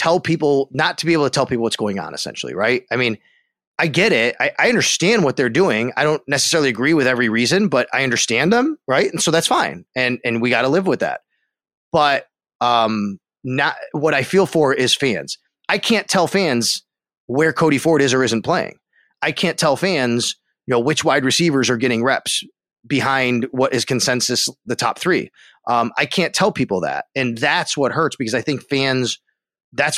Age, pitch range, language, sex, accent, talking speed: 30-49, 125-165 Hz, English, male, American, 205 wpm